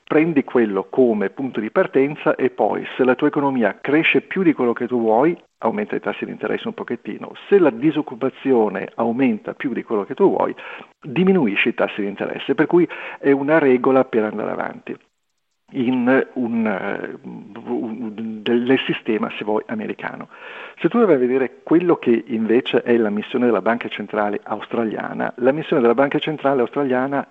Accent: native